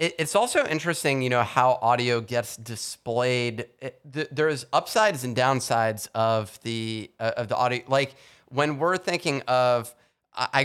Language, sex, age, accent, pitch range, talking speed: English, male, 30-49, American, 110-130 Hz, 140 wpm